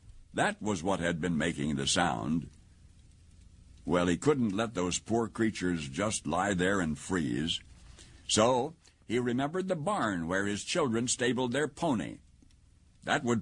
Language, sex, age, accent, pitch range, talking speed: English, male, 60-79, American, 90-135 Hz, 150 wpm